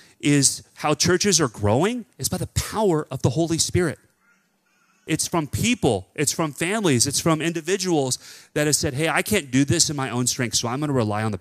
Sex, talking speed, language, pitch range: male, 215 wpm, English, 115-150 Hz